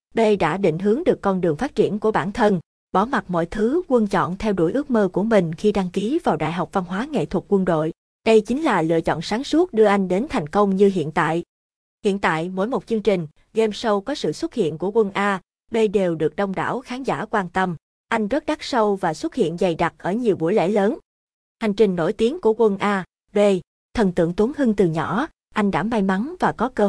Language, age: Vietnamese, 20-39